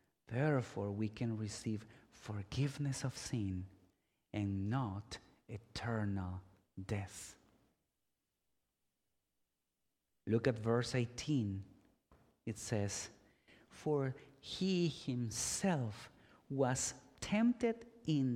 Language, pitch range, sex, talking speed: English, 105-135 Hz, male, 75 wpm